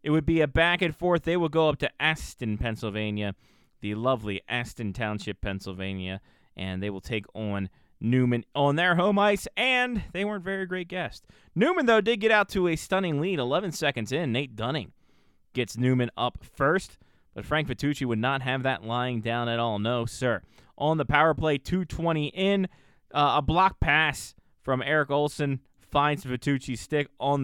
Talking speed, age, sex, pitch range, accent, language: 180 wpm, 20-39, male, 115-150 Hz, American, English